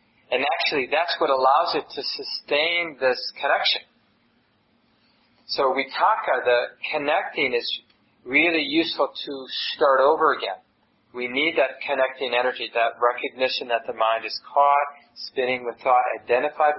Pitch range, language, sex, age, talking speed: 120-140 Hz, English, male, 40-59, 140 wpm